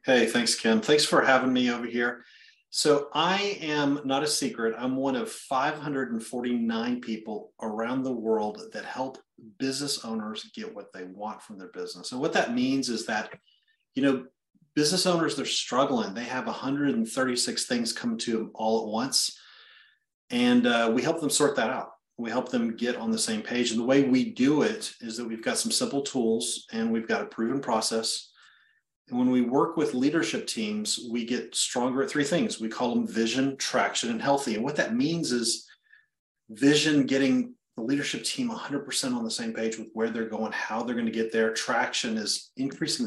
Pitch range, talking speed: 115-150 Hz, 195 wpm